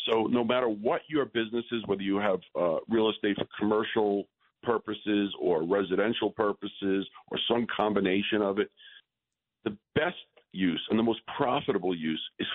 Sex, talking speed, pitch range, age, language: male, 160 wpm, 100-135 Hz, 50-69, English